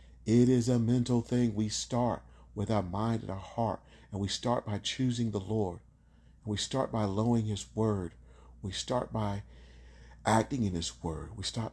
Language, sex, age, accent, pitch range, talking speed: English, male, 40-59, American, 70-110 Hz, 180 wpm